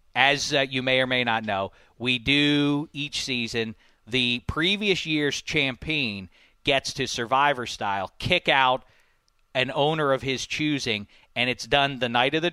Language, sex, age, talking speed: English, male, 40-59, 165 wpm